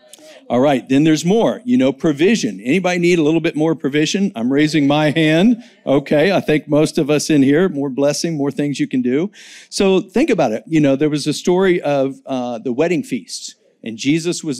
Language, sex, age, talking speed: English, male, 50-69, 215 wpm